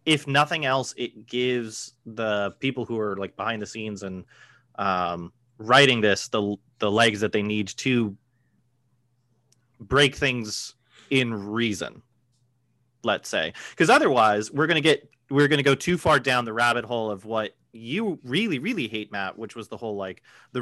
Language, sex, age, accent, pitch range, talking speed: English, male, 30-49, American, 110-125 Hz, 165 wpm